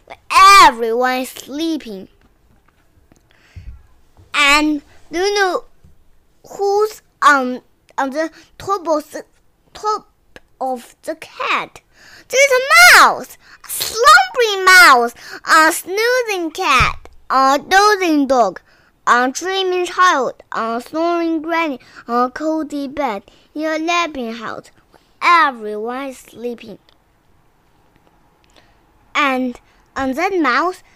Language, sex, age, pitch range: Chinese, male, 20-39, 270-385 Hz